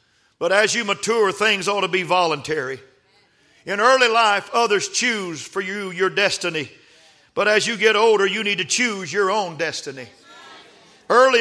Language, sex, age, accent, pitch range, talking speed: English, male, 50-69, American, 195-230 Hz, 165 wpm